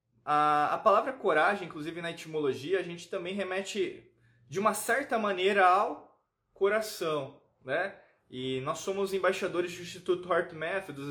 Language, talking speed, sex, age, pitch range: Portuguese, 140 wpm, male, 20-39, 135-190 Hz